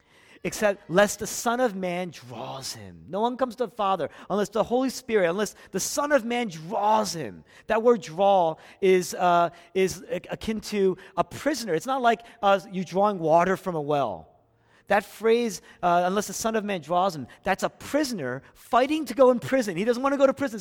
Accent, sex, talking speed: American, male, 205 wpm